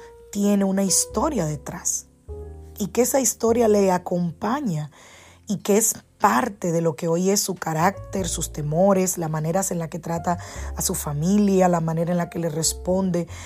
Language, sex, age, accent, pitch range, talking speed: Spanish, female, 20-39, American, 160-210 Hz, 175 wpm